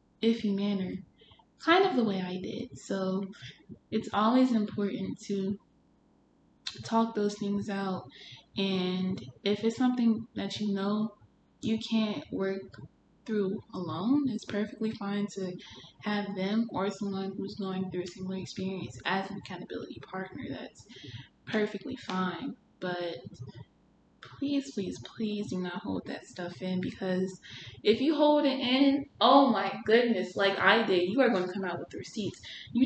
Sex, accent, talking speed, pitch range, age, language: female, American, 150 wpm, 190-230 Hz, 20-39, English